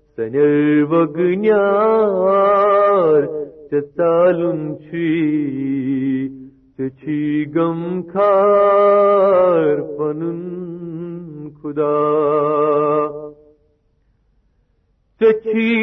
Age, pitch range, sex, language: 50-69, 150-205 Hz, male, Urdu